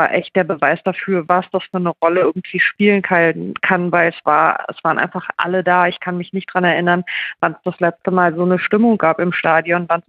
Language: German